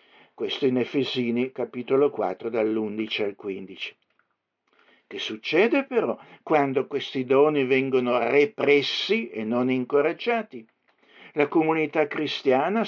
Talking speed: 100 wpm